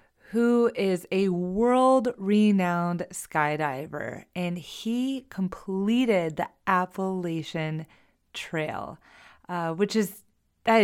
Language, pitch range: English, 165-205 Hz